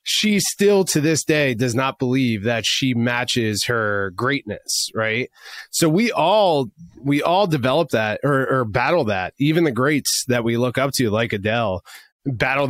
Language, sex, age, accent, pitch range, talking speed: English, male, 30-49, American, 120-155 Hz, 170 wpm